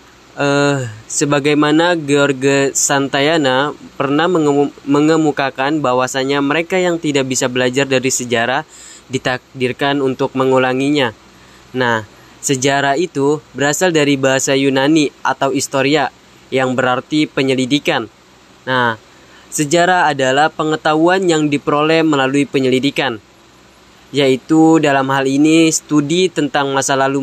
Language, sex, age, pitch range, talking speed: Indonesian, female, 10-29, 130-150 Hz, 100 wpm